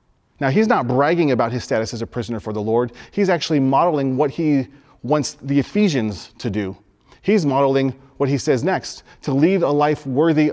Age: 30-49